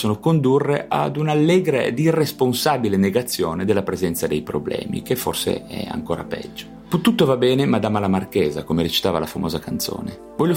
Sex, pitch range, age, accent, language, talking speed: male, 90-130 Hz, 30-49, native, Italian, 155 wpm